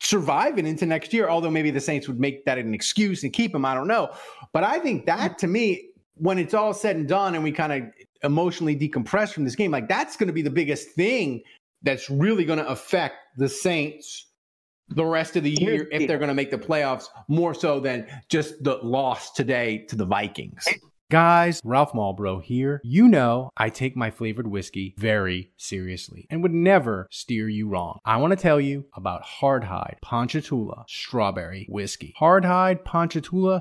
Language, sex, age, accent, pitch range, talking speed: English, male, 30-49, American, 115-175 Hz, 195 wpm